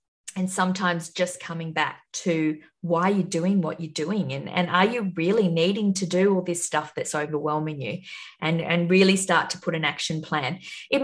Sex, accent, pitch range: female, Australian, 170-215 Hz